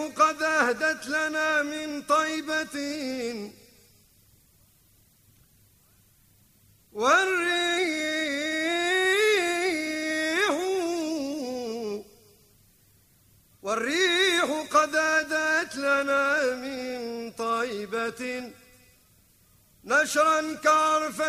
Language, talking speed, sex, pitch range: Arabic, 40 wpm, male, 225-320 Hz